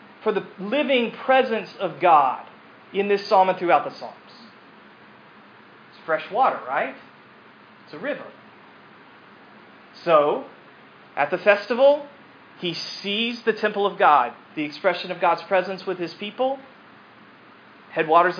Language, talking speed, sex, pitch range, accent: English, 125 wpm, male, 160-225 Hz, American